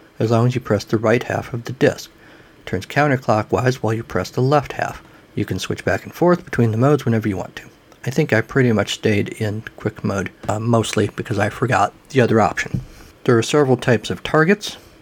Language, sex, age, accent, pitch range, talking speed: English, male, 50-69, American, 110-135 Hz, 225 wpm